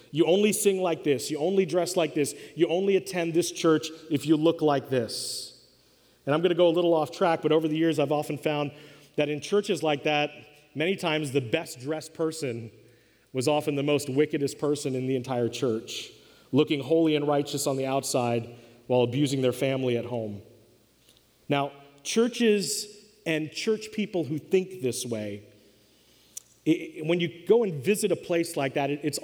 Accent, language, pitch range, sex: American, English, 135-170 Hz, male